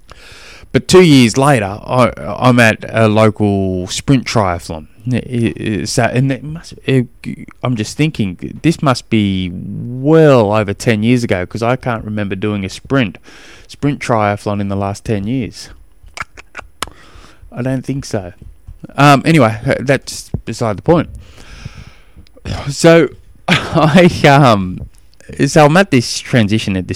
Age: 20-39